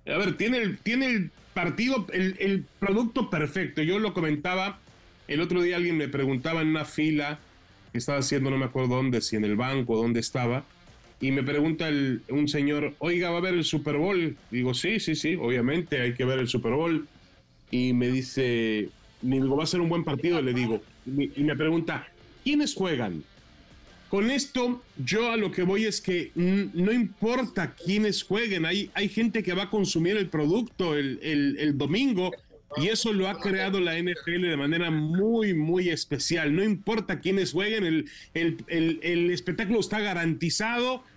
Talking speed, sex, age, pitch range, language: 190 wpm, male, 30-49, 145-195 Hz, Spanish